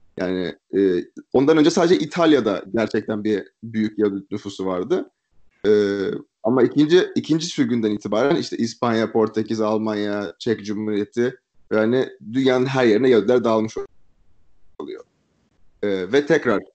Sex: male